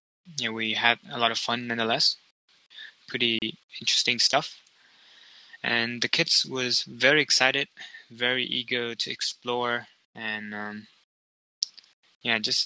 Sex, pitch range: male, 110-125 Hz